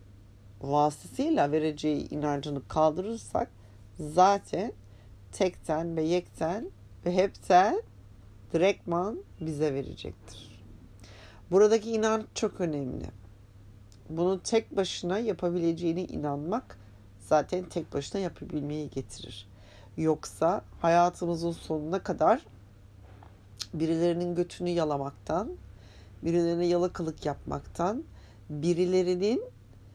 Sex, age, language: female, 60-79, Turkish